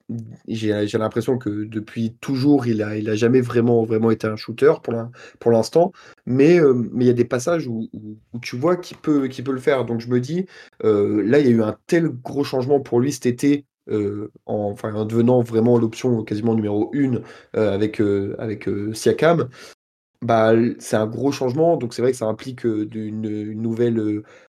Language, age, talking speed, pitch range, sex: French, 20-39, 215 wpm, 110-130 Hz, male